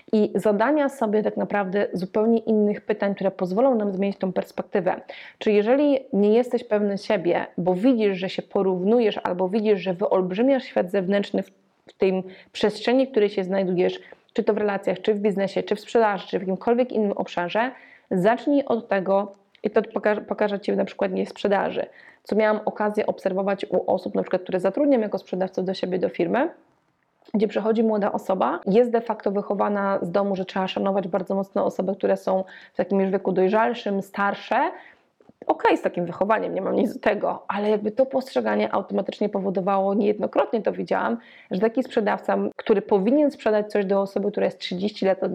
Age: 20-39